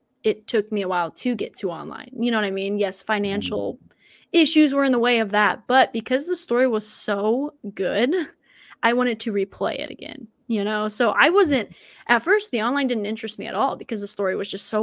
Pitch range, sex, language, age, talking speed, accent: 210-255 Hz, female, English, 20-39, 225 wpm, American